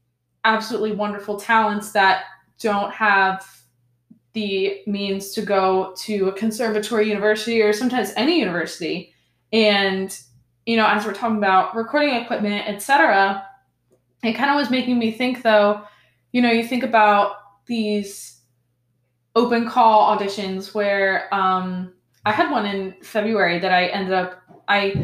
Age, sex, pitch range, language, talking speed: 20-39, female, 190-220 Hz, English, 140 wpm